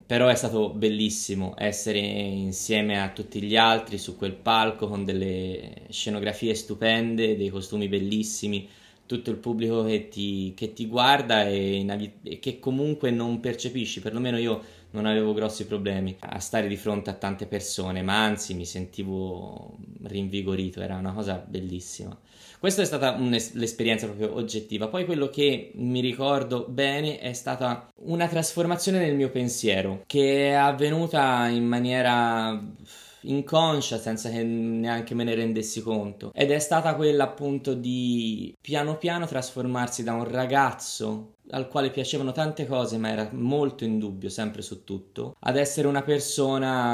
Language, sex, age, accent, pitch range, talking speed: Italian, male, 20-39, native, 105-130 Hz, 145 wpm